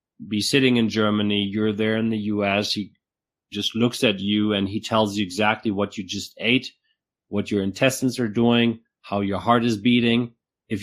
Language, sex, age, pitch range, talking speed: English, male, 30-49, 105-130 Hz, 190 wpm